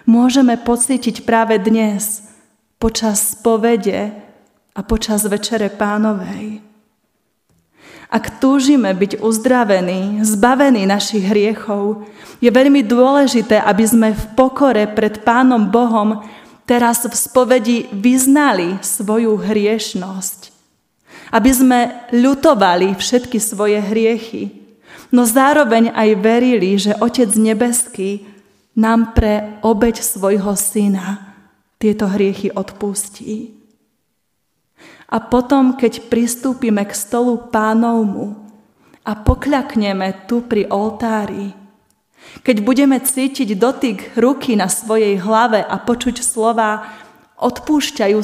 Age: 20-39